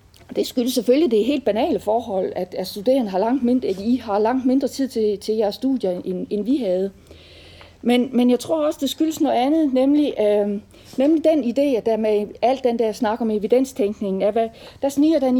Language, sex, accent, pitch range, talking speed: English, female, Danish, 200-260 Hz, 210 wpm